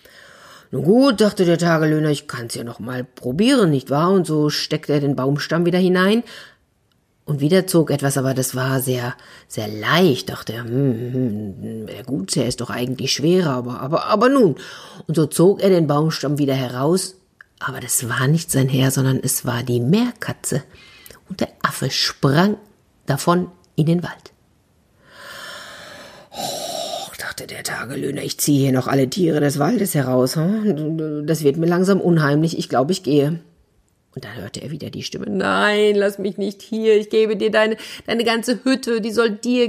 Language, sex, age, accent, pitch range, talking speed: German, female, 50-69, German, 135-200 Hz, 170 wpm